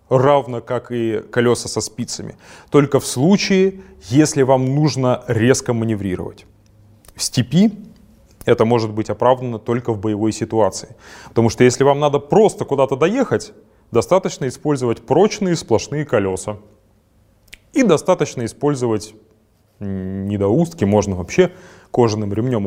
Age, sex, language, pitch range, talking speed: 30-49, male, Russian, 110-140 Hz, 120 wpm